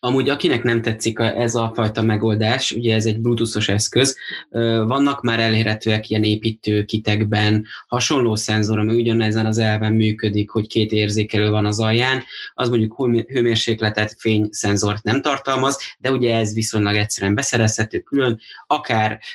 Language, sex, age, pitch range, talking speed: Hungarian, male, 20-39, 110-120 Hz, 140 wpm